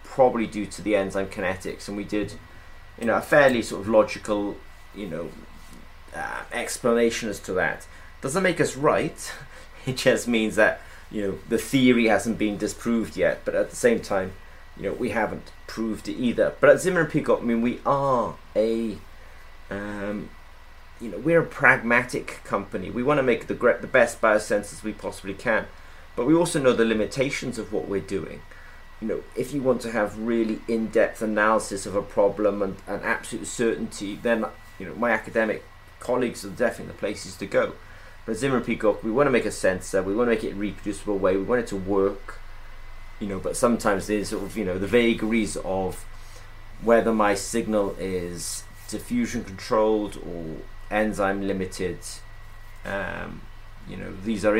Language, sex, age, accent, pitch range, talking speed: English, male, 30-49, British, 95-115 Hz, 185 wpm